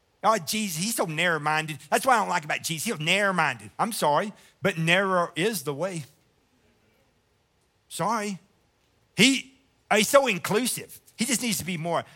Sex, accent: male, American